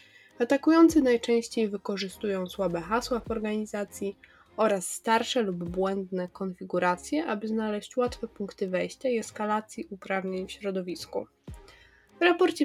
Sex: female